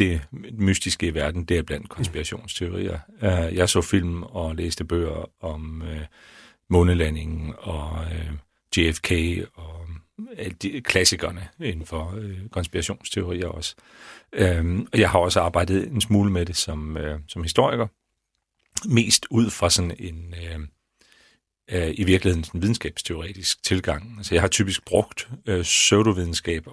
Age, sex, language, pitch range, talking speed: 40-59, male, Danish, 80-100 Hz, 135 wpm